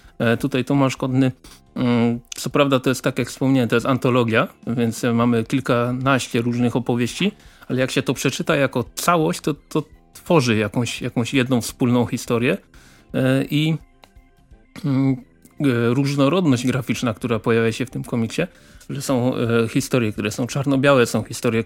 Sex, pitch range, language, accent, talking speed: male, 120-150 Hz, Polish, native, 140 wpm